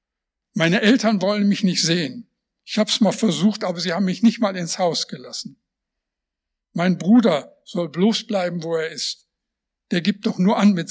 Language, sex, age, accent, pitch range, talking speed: English, male, 60-79, German, 175-220 Hz, 185 wpm